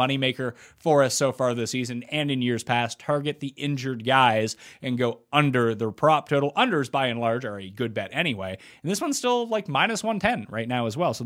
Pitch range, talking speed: 120-180 Hz, 225 wpm